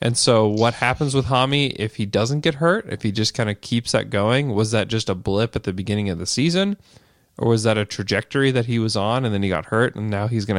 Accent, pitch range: American, 105-135 Hz